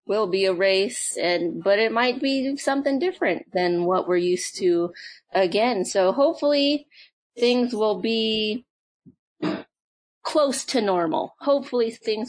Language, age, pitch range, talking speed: English, 30-49, 185-235 Hz, 130 wpm